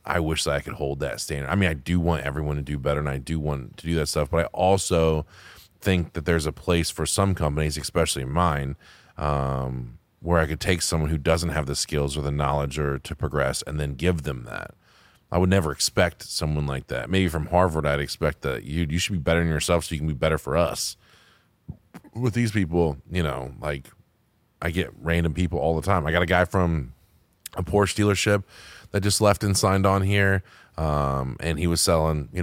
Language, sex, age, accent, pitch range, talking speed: English, male, 20-39, American, 75-90 Hz, 225 wpm